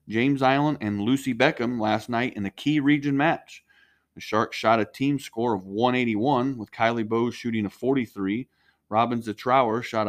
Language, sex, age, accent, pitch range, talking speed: English, male, 30-49, American, 105-125 Hz, 180 wpm